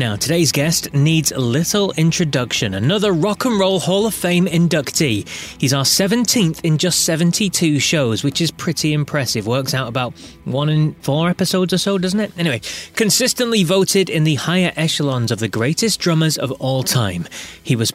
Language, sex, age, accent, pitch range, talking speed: English, male, 30-49, British, 125-175 Hz, 175 wpm